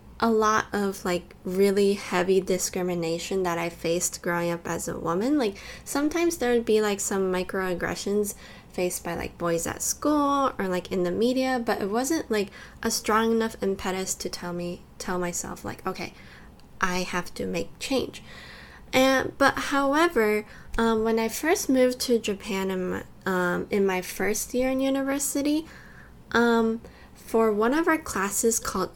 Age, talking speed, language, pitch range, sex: 10-29, 160 wpm, English, 180-240 Hz, female